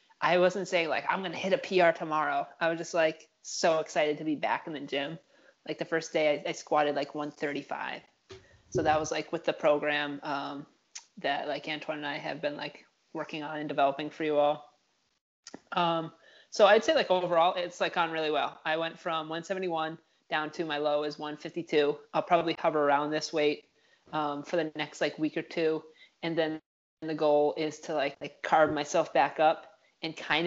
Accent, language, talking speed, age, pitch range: American, English, 205 wpm, 20-39, 150-170 Hz